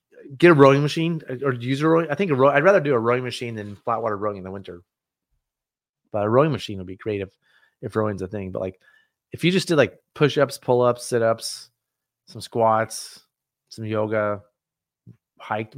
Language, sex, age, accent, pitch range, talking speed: English, male, 30-49, American, 105-135 Hz, 195 wpm